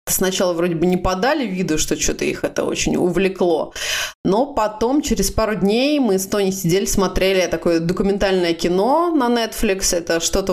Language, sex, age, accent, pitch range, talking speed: Russian, female, 20-39, native, 175-215 Hz, 170 wpm